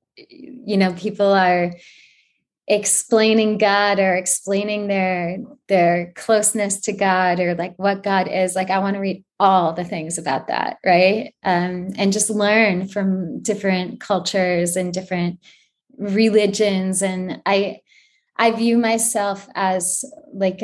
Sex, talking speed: female, 135 wpm